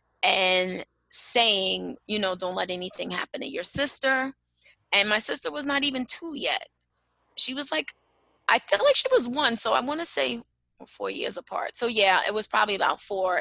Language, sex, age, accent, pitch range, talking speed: English, female, 20-39, American, 180-215 Hz, 195 wpm